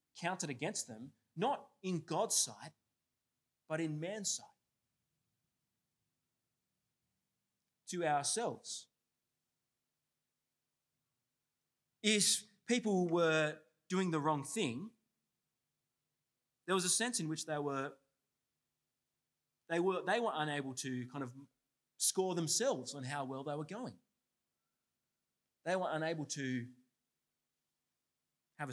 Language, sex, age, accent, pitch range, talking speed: English, male, 30-49, Australian, 125-165 Hz, 100 wpm